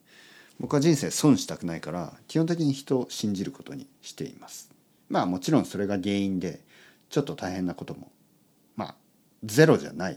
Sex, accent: male, native